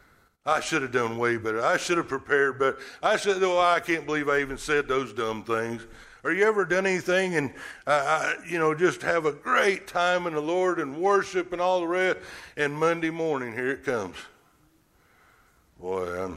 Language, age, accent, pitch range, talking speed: English, 60-79, American, 115-155 Hz, 200 wpm